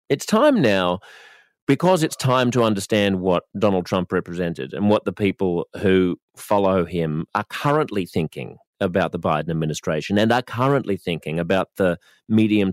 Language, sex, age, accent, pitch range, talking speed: English, male, 30-49, Australian, 90-110 Hz, 155 wpm